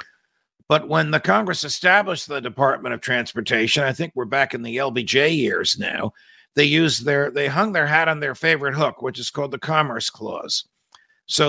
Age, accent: 50-69, American